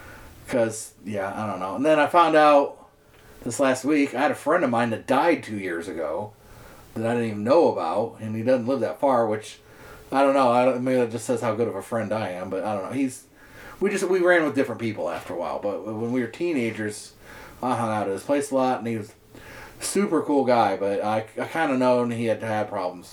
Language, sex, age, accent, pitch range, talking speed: English, male, 40-59, American, 105-130 Hz, 255 wpm